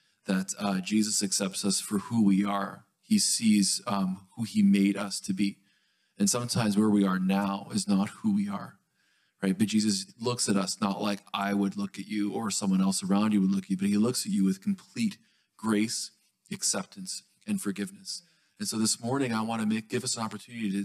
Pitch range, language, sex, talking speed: 100-120 Hz, English, male, 210 wpm